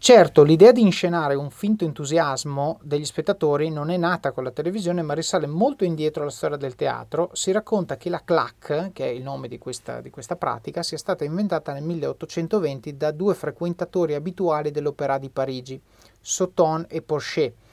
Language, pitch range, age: Italian, 140-180 Hz, 30-49